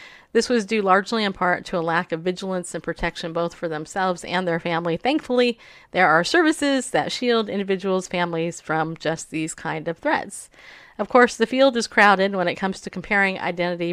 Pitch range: 175-230 Hz